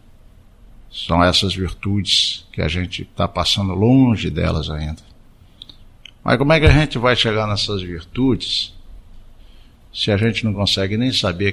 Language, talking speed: Portuguese, 145 wpm